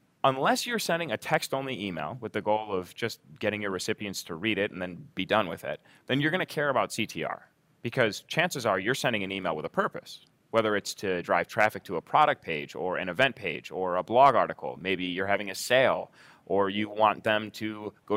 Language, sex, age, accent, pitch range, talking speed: English, male, 30-49, American, 105-150 Hz, 225 wpm